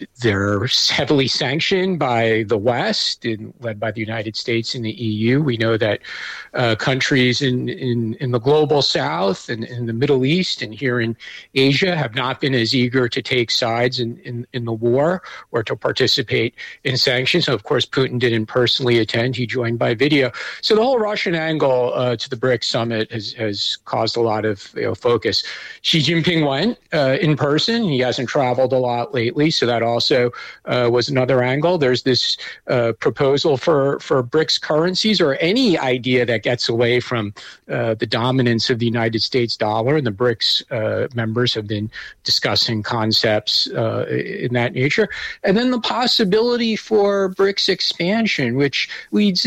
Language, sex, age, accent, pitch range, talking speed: English, male, 50-69, American, 115-150 Hz, 180 wpm